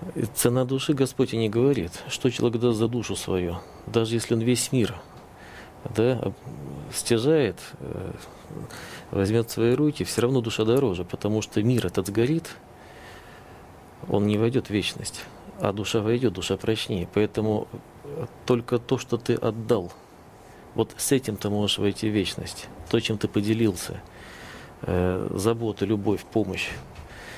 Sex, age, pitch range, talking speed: male, 40-59, 105-120 Hz, 135 wpm